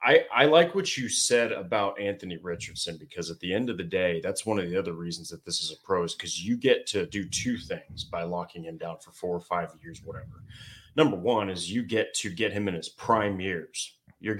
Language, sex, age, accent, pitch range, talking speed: English, male, 30-49, American, 95-125 Hz, 240 wpm